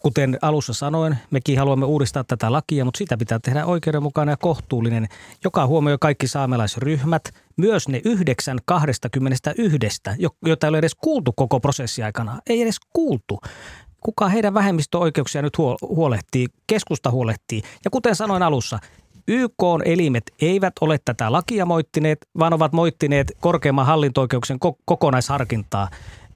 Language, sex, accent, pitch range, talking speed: Finnish, male, native, 130-175 Hz, 130 wpm